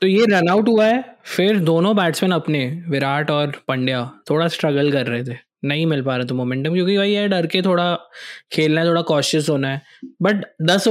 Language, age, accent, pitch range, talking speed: Hindi, 20-39, native, 150-200 Hz, 205 wpm